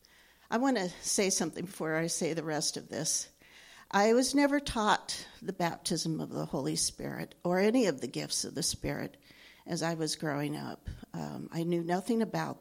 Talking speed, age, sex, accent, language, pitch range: 190 wpm, 50-69, female, American, English, 155-195 Hz